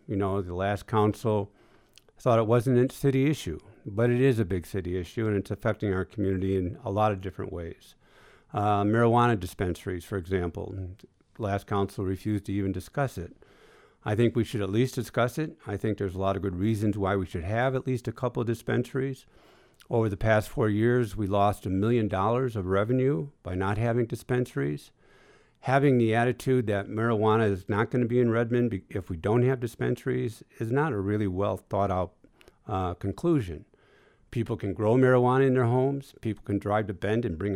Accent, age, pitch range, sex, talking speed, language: American, 50-69, 100-120 Hz, male, 195 wpm, English